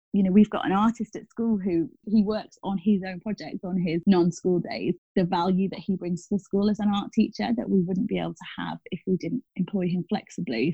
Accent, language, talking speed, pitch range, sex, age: British, English, 245 wpm, 165-205 Hz, female, 20-39